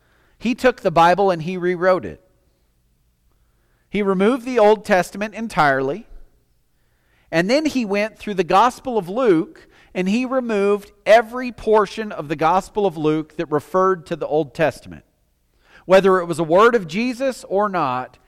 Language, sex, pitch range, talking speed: English, male, 150-215 Hz, 160 wpm